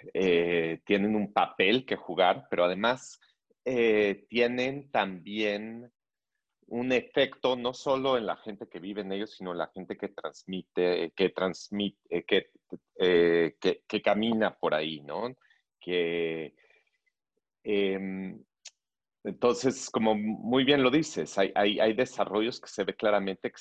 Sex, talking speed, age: male, 125 wpm, 40-59